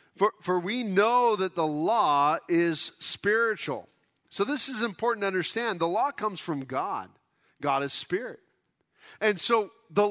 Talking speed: 155 wpm